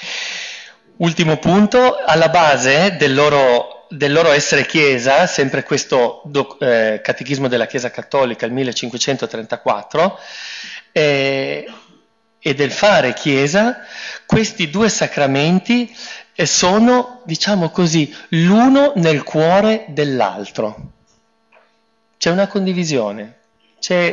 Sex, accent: male, native